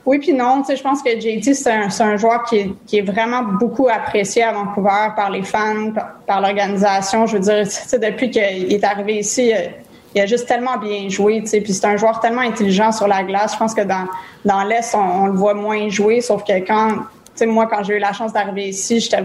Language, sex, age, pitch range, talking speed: French, female, 20-39, 200-225 Hz, 255 wpm